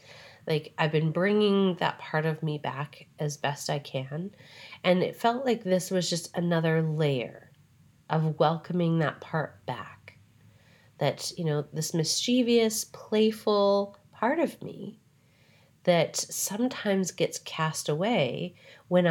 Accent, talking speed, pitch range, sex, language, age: American, 130 wpm, 150-195 Hz, female, English, 30-49